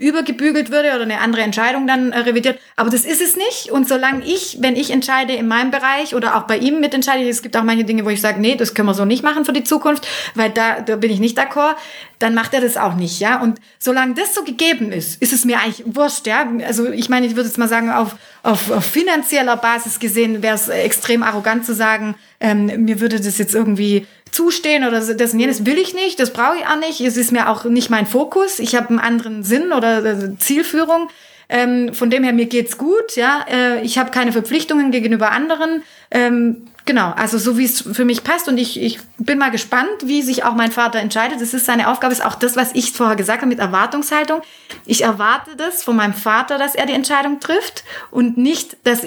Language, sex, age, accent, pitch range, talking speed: German, female, 30-49, German, 225-280 Hz, 230 wpm